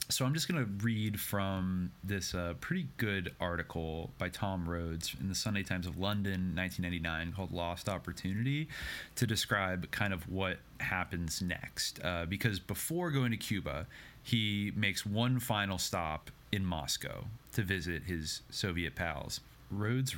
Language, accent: English, American